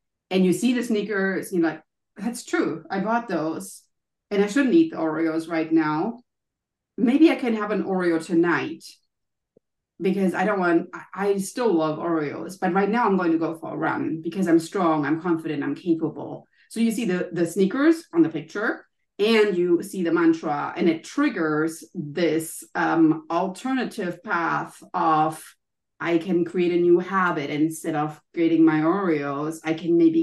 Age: 30-49